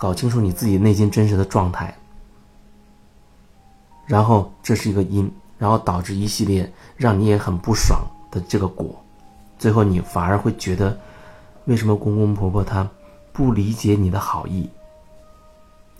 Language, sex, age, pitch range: Chinese, male, 30-49, 95-115 Hz